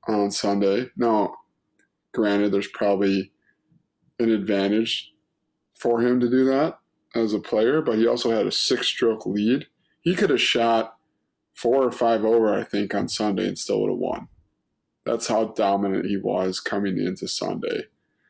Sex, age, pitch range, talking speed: male, 20-39, 110-130 Hz, 155 wpm